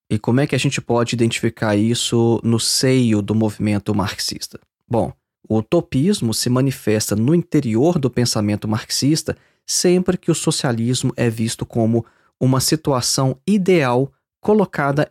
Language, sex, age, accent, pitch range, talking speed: Portuguese, male, 20-39, Brazilian, 115-155 Hz, 140 wpm